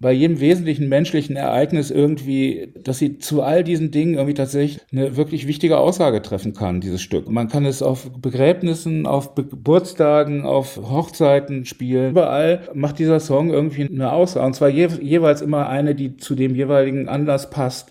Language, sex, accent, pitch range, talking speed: German, male, German, 125-150 Hz, 175 wpm